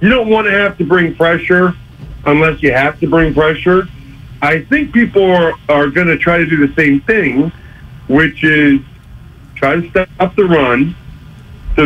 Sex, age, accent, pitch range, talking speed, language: male, 50-69, American, 140-185 Hz, 170 wpm, English